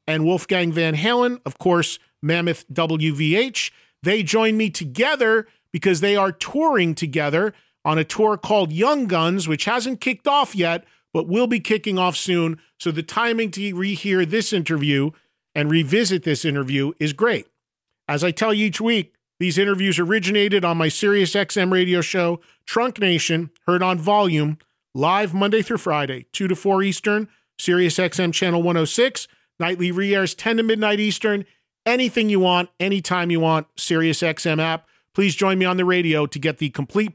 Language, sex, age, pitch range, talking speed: English, male, 40-59, 165-210 Hz, 170 wpm